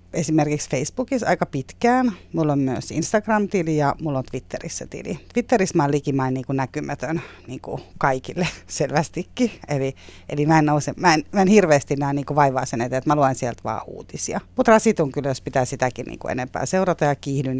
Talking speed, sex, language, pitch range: 195 wpm, female, Finnish, 130-175 Hz